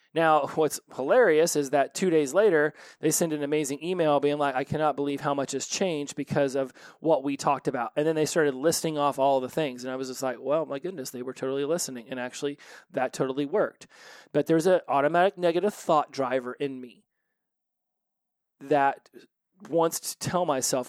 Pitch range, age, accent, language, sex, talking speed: 135-155 Hz, 30-49, American, English, male, 195 wpm